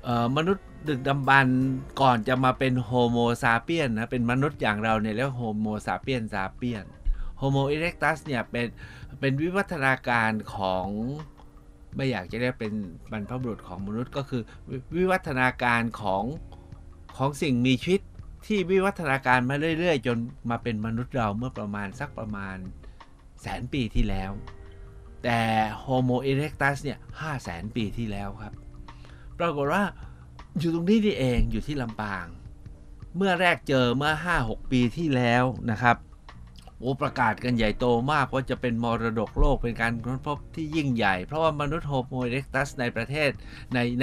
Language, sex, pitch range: Thai, male, 105-135 Hz